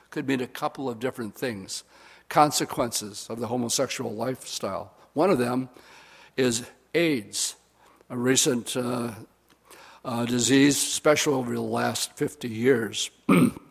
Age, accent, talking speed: 60-79, American, 125 wpm